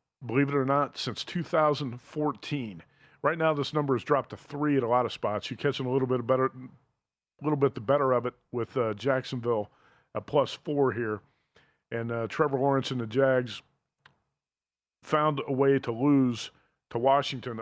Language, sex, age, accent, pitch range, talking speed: English, male, 40-59, American, 125-145 Hz, 185 wpm